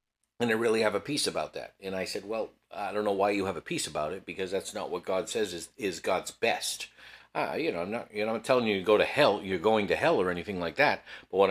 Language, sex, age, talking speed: English, male, 50-69, 290 wpm